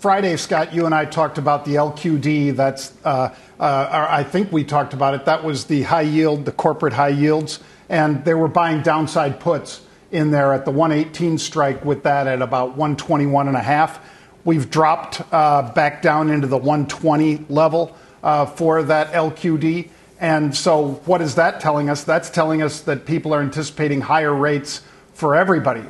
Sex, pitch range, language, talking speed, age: male, 140-165 Hz, English, 180 wpm, 50-69